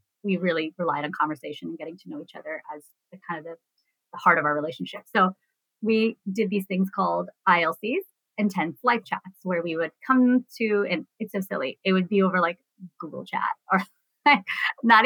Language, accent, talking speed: English, American, 195 wpm